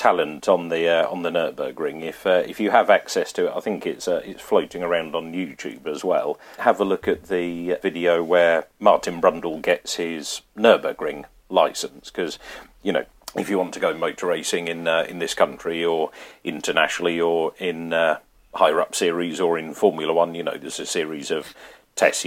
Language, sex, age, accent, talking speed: English, male, 40-59, British, 195 wpm